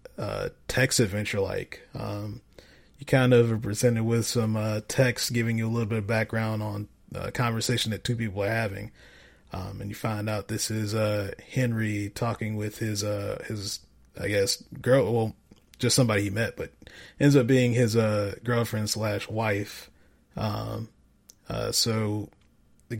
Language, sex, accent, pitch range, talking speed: English, male, American, 105-120 Hz, 170 wpm